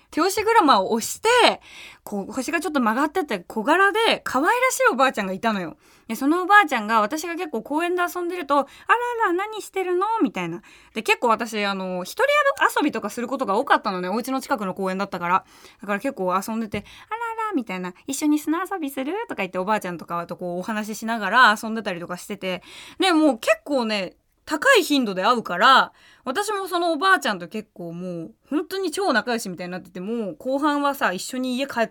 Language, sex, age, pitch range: Japanese, female, 20-39, 200-330 Hz